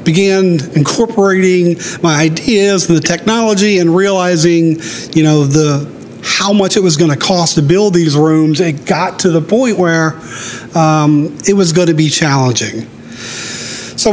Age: 40-59